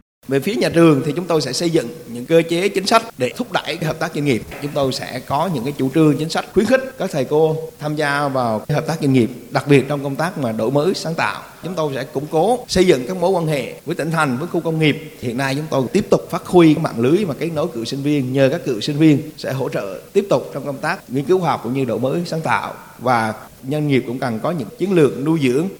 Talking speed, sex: 280 wpm, male